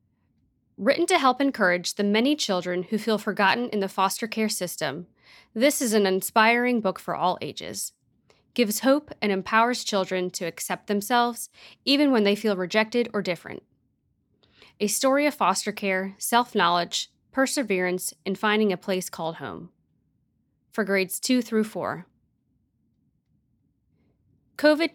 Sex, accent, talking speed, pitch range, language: female, American, 135 wpm, 190-235 Hz, English